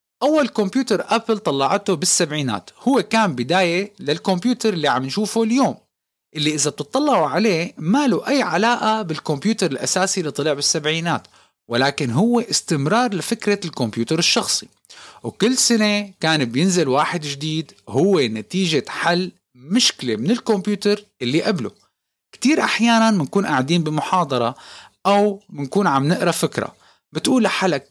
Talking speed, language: 125 wpm, Arabic